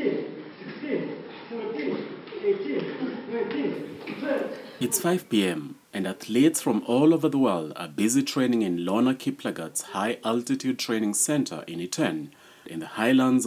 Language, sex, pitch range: German, male, 115-175 Hz